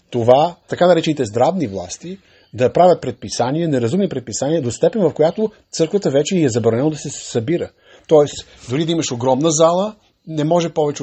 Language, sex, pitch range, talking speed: Bulgarian, male, 120-170 Hz, 165 wpm